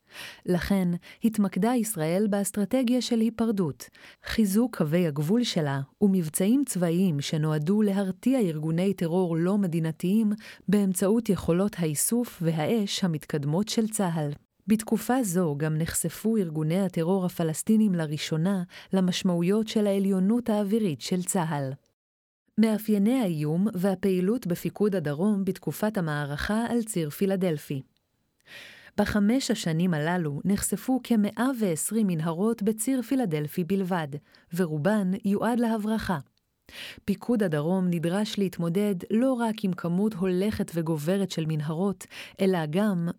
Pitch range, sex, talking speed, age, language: 165-215 Hz, female, 105 wpm, 30-49, Hebrew